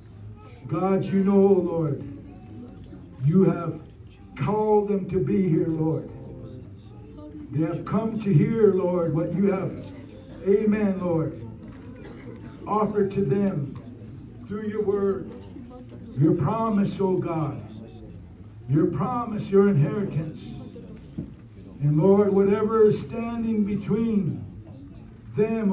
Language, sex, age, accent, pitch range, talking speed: English, male, 60-79, American, 115-180 Hz, 105 wpm